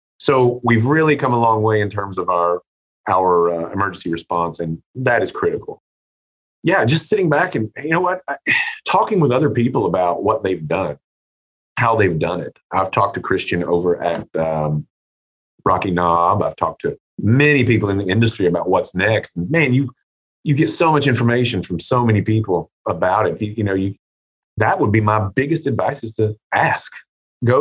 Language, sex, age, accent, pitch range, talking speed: English, male, 30-49, American, 85-135 Hz, 190 wpm